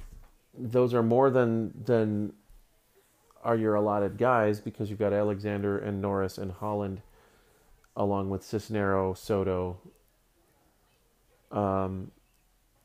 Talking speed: 105 wpm